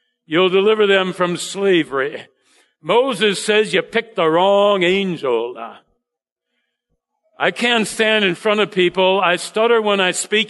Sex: male